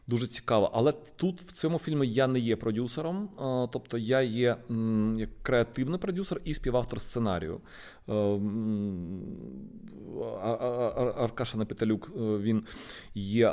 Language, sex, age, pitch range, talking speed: Ukrainian, male, 30-49, 100-130 Hz, 110 wpm